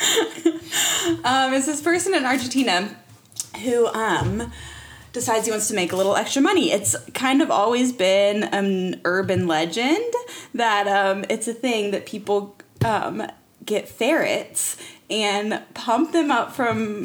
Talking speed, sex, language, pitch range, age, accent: 140 wpm, female, English, 195-255 Hz, 20-39, American